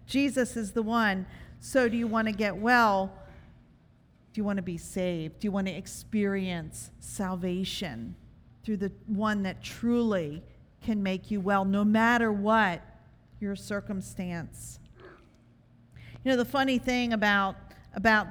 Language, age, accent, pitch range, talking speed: English, 50-69, American, 190-255 Hz, 145 wpm